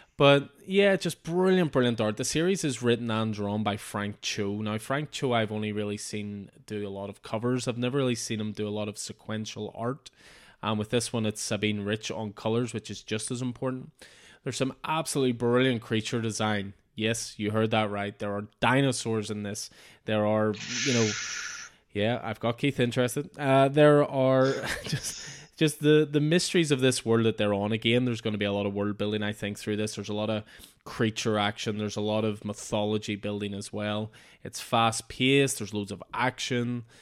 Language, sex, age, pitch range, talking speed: English, male, 20-39, 105-125 Hz, 205 wpm